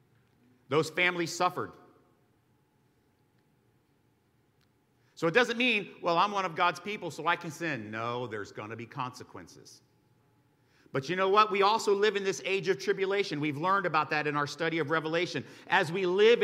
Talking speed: 170 wpm